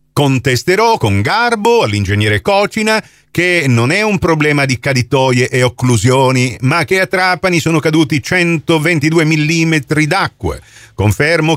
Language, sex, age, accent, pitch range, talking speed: Italian, male, 40-59, native, 115-165 Hz, 125 wpm